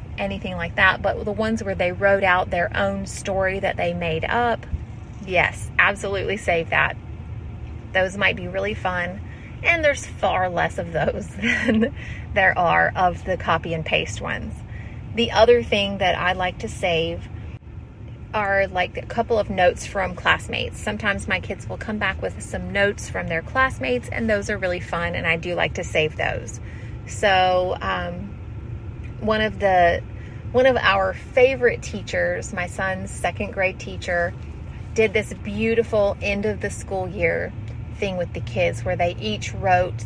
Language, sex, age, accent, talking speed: English, female, 30-49, American, 170 wpm